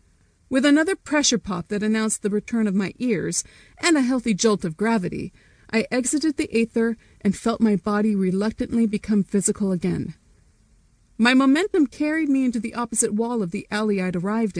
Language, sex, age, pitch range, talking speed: English, female, 30-49, 200-250 Hz, 175 wpm